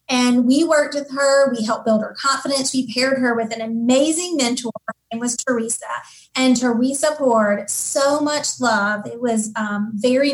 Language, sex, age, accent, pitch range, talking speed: English, female, 30-49, American, 225-275 Hz, 180 wpm